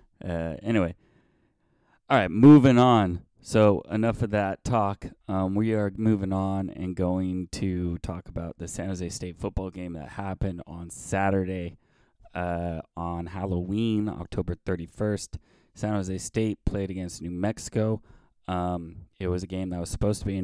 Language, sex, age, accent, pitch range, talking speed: English, male, 20-39, American, 90-110 Hz, 160 wpm